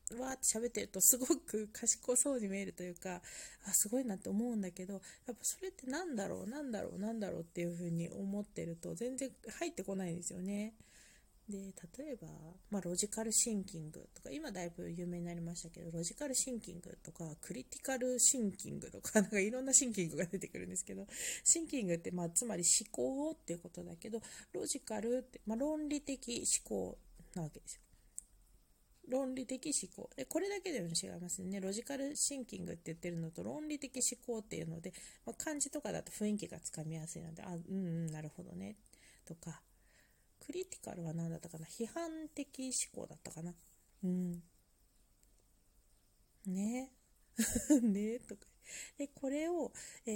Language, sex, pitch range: Japanese, female, 170-250 Hz